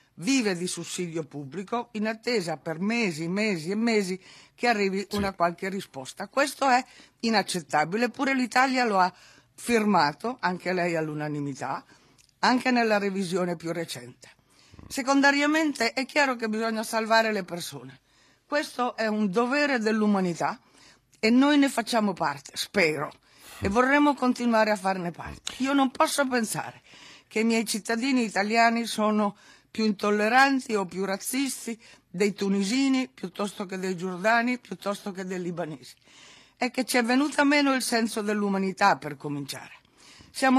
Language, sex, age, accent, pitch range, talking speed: Italian, female, 60-79, native, 180-245 Hz, 140 wpm